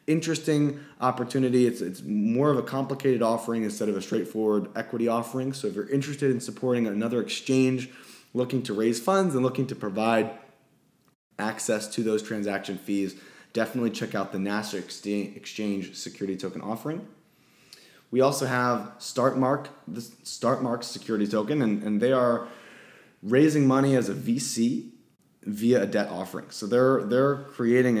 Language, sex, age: English, male, 20-39